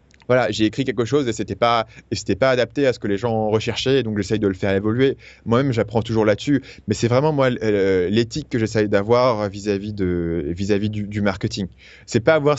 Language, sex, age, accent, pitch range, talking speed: French, male, 20-39, French, 105-135 Hz, 215 wpm